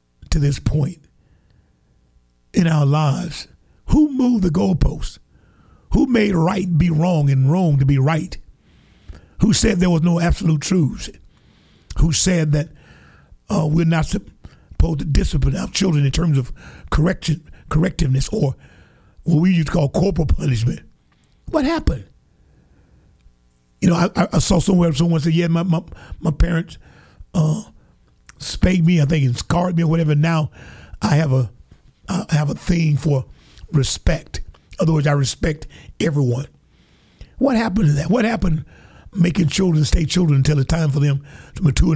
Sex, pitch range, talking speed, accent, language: male, 140-180 Hz, 150 wpm, American, English